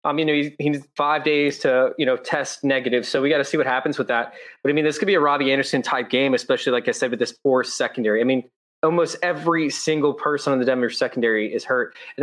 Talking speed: 275 wpm